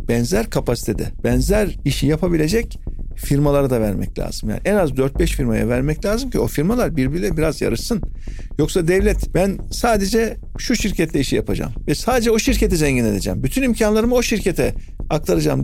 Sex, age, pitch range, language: male, 50-69, 140-210 Hz, Turkish